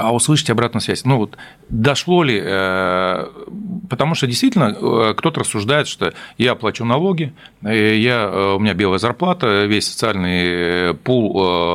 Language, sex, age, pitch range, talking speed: Russian, male, 40-59, 95-130 Hz, 130 wpm